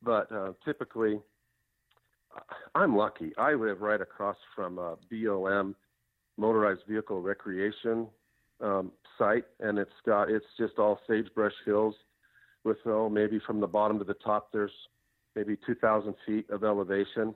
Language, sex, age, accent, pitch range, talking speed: English, male, 50-69, American, 100-110 Hz, 135 wpm